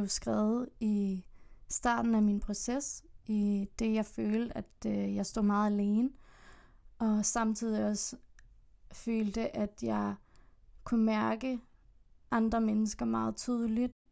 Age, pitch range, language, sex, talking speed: 20-39, 205-230 Hz, Danish, female, 115 wpm